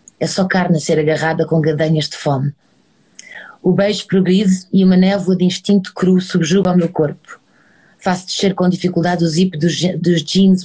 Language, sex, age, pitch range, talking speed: Portuguese, female, 20-39, 165-190 Hz, 175 wpm